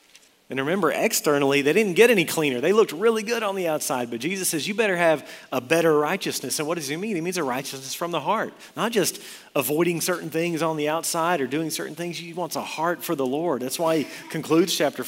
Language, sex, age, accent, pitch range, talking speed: English, male, 40-59, American, 135-170 Hz, 240 wpm